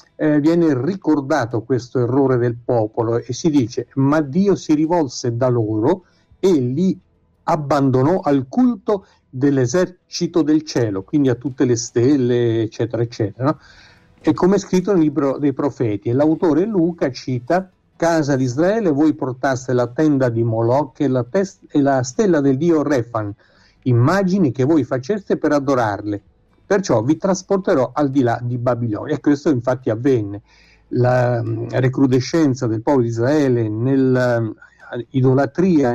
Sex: male